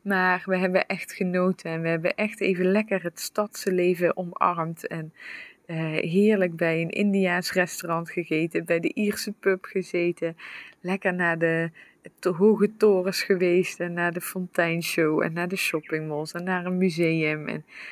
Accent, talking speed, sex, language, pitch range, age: Dutch, 160 wpm, female, English, 175-195 Hz, 20-39